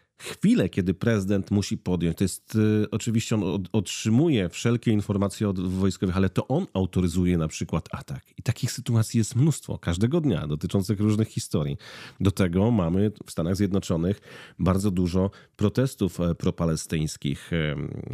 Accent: native